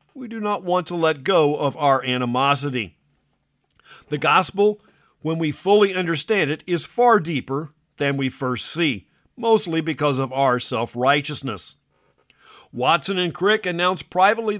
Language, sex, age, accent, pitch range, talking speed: English, male, 50-69, American, 145-195 Hz, 140 wpm